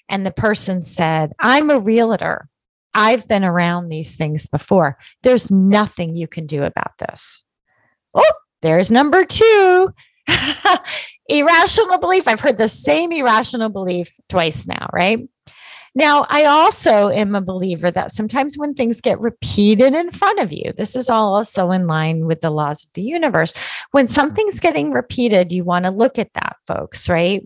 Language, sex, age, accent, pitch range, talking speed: English, female, 30-49, American, 175-255 Hz, 165 wpm